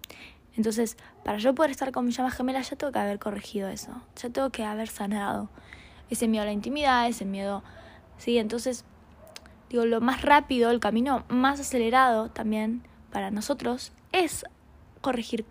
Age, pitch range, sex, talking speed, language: 20-39, 215-255 Hz, female, 165 wpm, Spanish